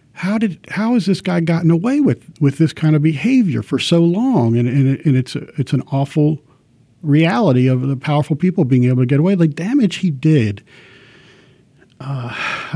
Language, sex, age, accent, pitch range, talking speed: English, male, 50-69, American, 125-170 Hz, 190 wpm